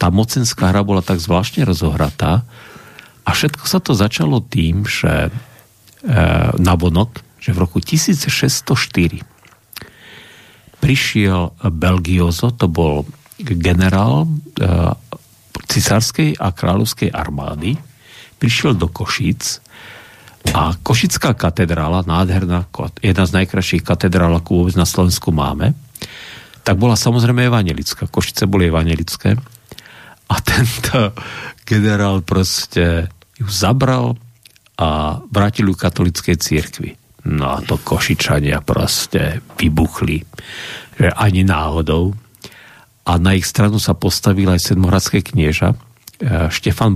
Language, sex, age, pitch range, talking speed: Slovak, male, 50-69, 90-120 Hz, 105 wpm